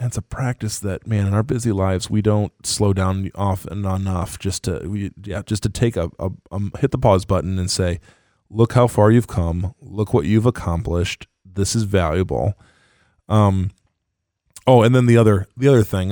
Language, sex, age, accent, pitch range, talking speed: English, male, 20-39, American, 90-110 Hz, 185 wpm